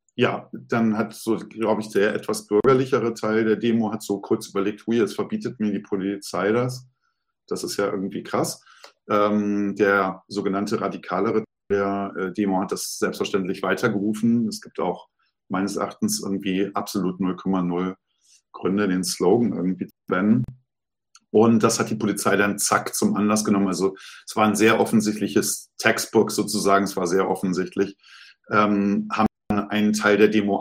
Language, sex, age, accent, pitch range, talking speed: German, male, 50-69, German, 100-115 Hz, 155 wpm